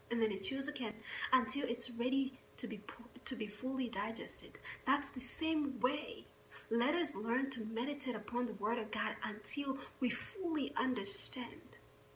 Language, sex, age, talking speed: English, female, 20-39, 160 wpm